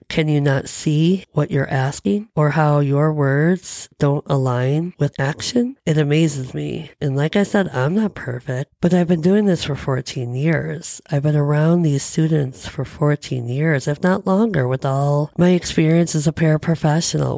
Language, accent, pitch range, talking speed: English, American, 140-170 Hz, 175 wpm